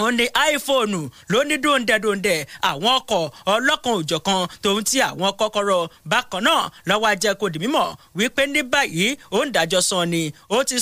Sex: male